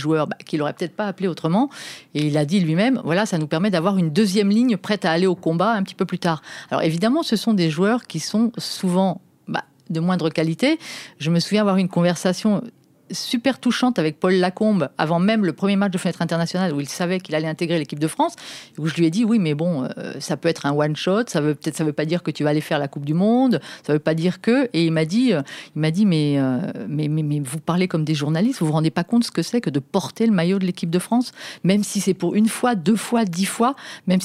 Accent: French